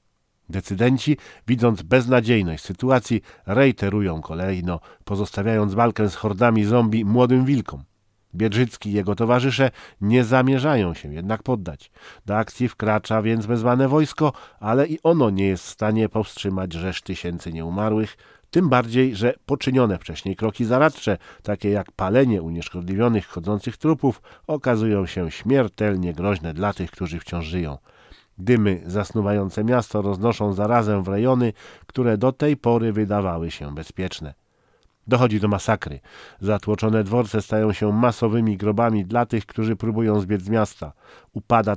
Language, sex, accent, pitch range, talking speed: German, male, Polish, 95-120 Hz, 130 wpm